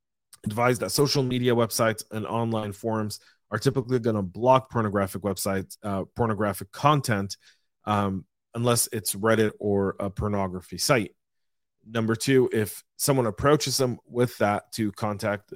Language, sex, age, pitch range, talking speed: English, male, 30-49, 100-120 Hz, 140 wpm